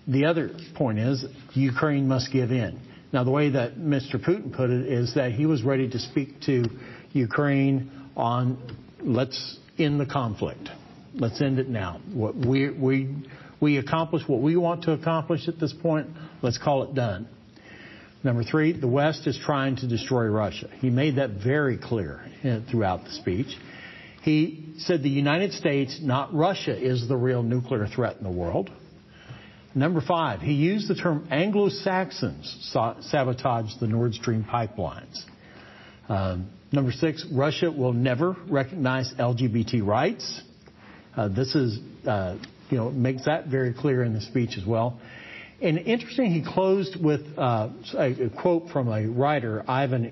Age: 60-79